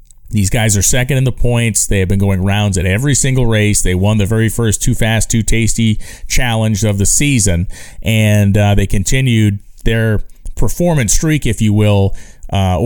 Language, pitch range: English, 100-120 Hz